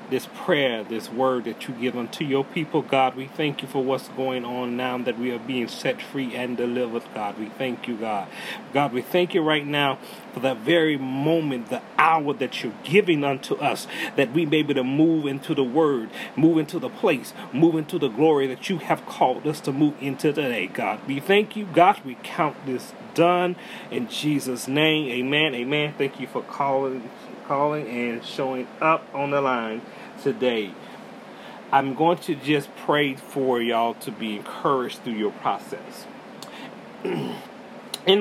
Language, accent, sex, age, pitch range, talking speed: English, American, male, 30-49, 125-160 Hz, 180 wpm